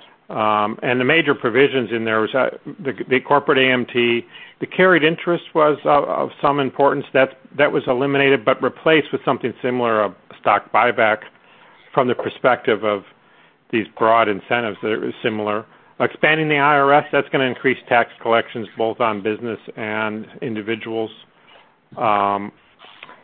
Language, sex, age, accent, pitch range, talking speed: English, male, 50-69, American, 110-140 Hz, 150 wpm